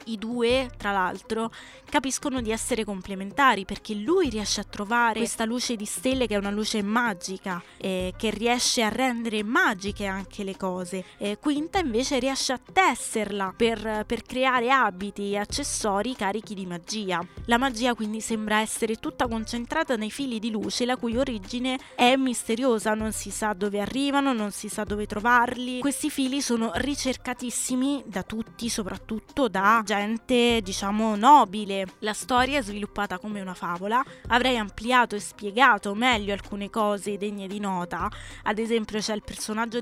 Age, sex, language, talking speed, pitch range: 20-39, female, Italian, 155 wpm, 205-245 Hz